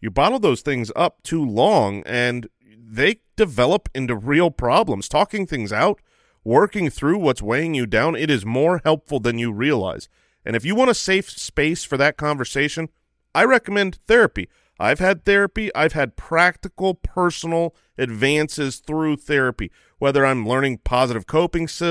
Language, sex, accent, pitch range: English, male, American, 120-165 Hz